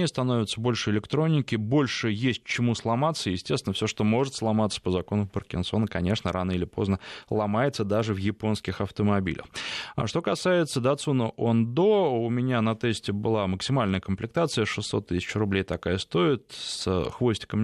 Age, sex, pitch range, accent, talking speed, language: 20-39, male, 105-130 Hz, native, 145 wpm, Russian